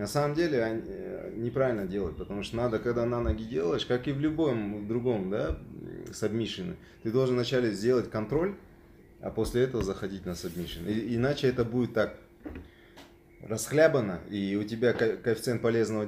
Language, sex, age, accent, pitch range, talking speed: Russian, male, 30-49, native, 95-120 Hz, 155 wpm